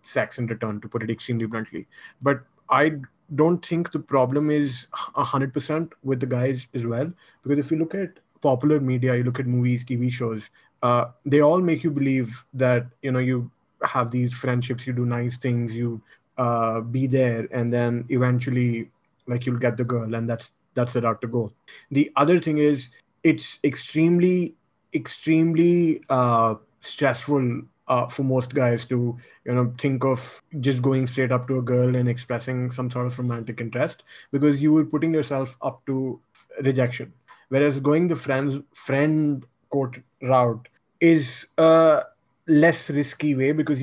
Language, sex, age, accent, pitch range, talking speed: English, male, 30-49, Indian, 120-145 Hz, 175 wpm